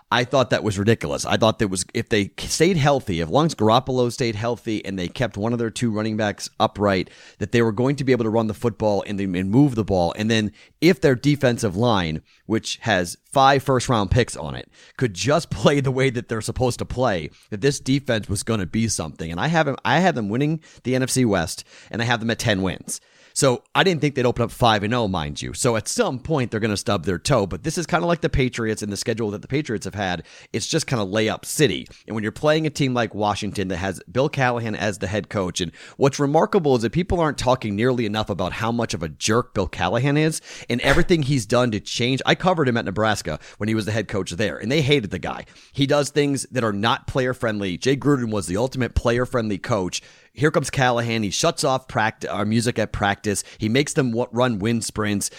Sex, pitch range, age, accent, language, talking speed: male, 105-135 Hz, 30-49, American, English, 245 wpm